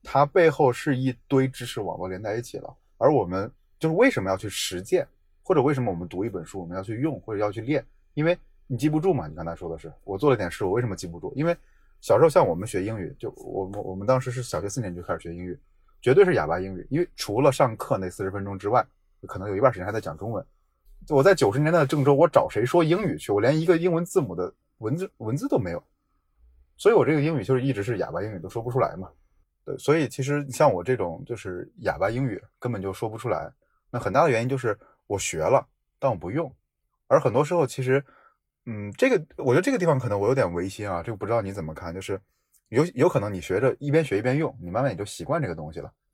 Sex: male